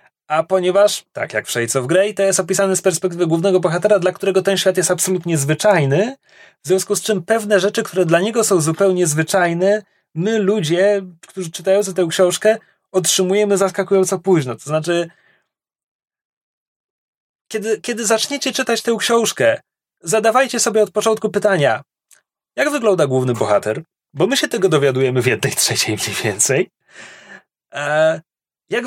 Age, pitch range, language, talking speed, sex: 30-49, 165-210 Hz, Polish, 145 wpm, male